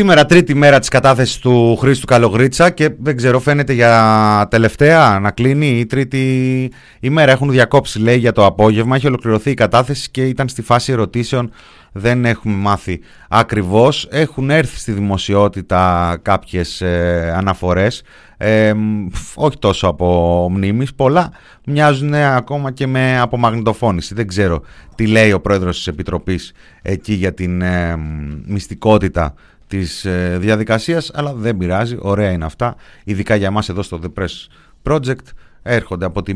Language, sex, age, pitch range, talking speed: Greek, male, 30-49, 95-130 Hz, 140 wpm